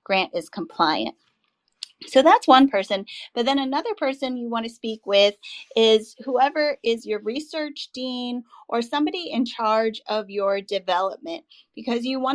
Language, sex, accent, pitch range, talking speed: English, female, American, 215-265 Hz, 155 wpm